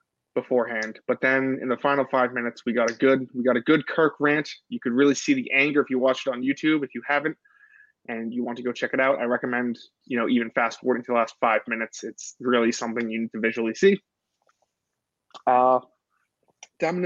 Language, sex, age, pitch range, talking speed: English, male, 20-39, 125-160 Hz, 220 wpm